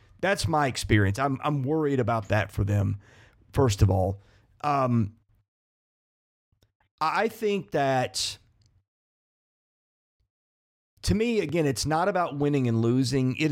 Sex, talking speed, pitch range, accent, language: male, 120 wpm, 105-145 Hz, American, English